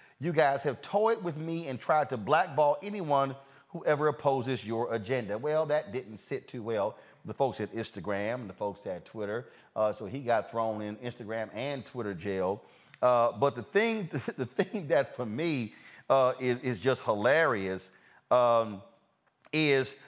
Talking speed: 170 wpm